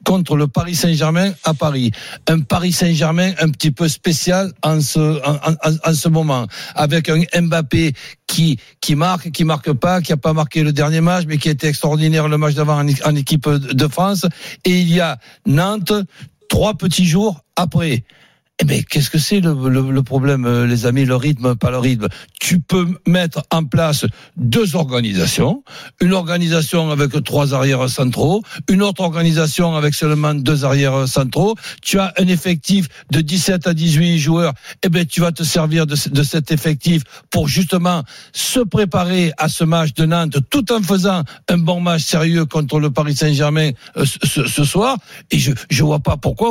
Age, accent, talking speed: 60-79, French, 185 wpm